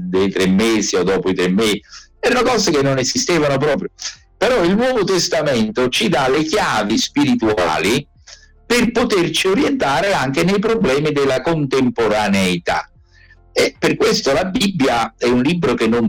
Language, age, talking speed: Italian, 50-69, 155 wpm